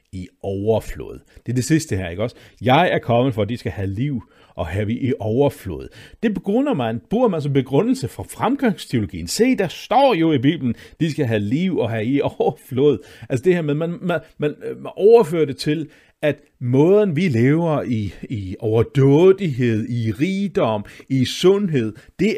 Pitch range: 110-170 Hz